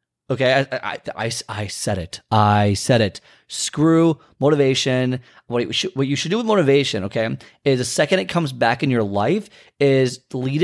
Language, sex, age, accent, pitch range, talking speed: English, male, 30-49, American, 120-165 Hz, 185 wpm